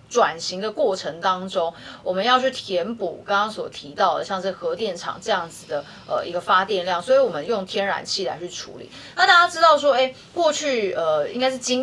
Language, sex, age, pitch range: Chinese, female, 30-49, 190-265 Hz